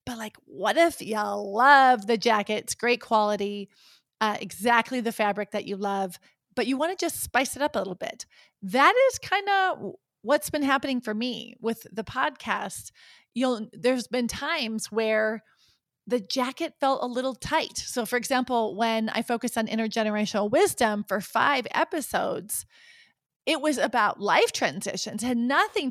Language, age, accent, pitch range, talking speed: English, 30-49, American, 210-260 Hz, 165 wpm